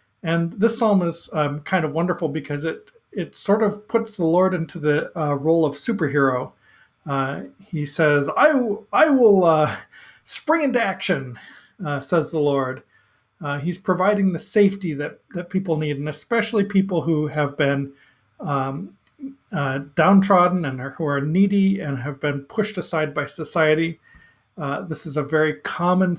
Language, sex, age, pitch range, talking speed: English, male, 40-59, 145-185 Hz, 165 wpm